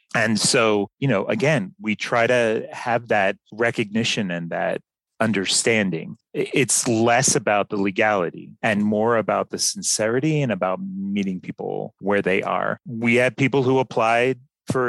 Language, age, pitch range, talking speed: English, 30-49, 105-140 Hz, 150 wpm